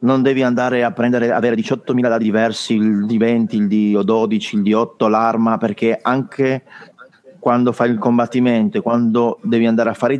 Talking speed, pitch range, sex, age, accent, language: 170 wpm, 110-135 Hz, male, 30-49, native, Italian